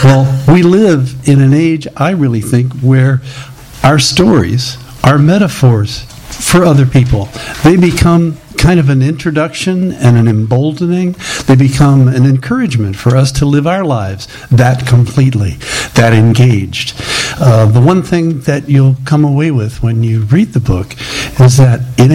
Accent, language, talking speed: American, English, 155 wpm